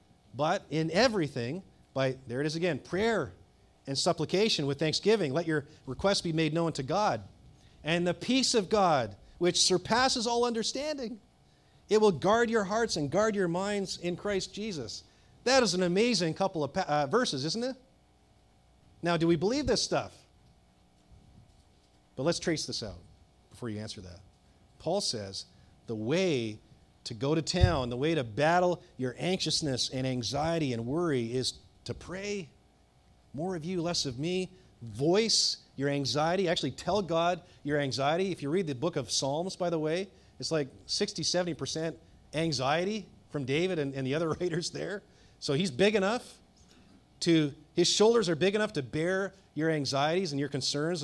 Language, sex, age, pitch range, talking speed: English, male, 40-59, 130-190 Hz, 165 wpm